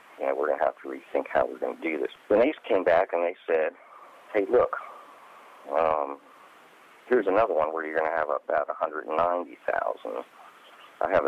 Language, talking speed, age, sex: English, 190 wpm, 50-69, male